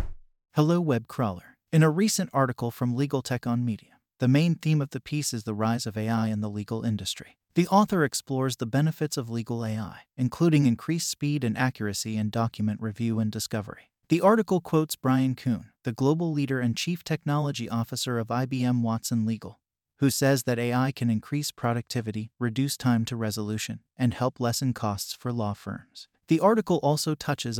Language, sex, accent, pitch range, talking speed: English, male, American, 115-140 Hz, 180 wpm